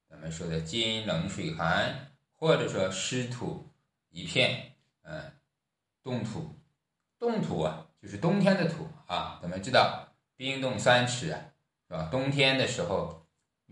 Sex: male